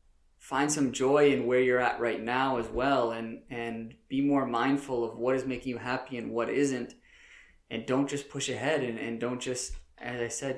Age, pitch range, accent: 20-39, 100-125 Hz, American